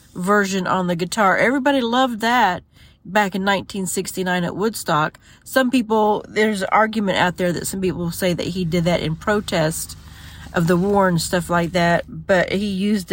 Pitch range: 170-220 Hz